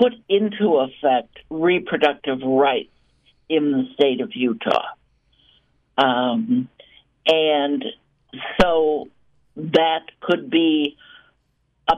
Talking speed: 85 wpm